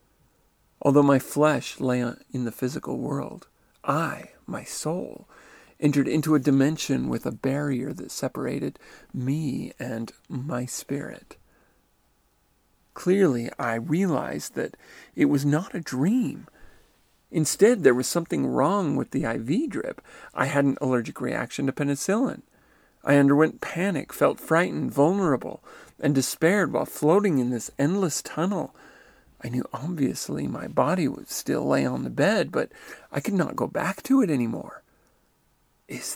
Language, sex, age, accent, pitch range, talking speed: English, male, 40-59, American, 130-155 Hz, 140 wpm